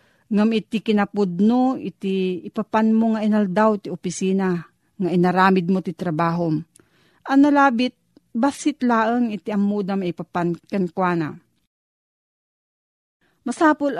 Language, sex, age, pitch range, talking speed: Filipino, female, 40-59, 180-225 Hz, 115 wpm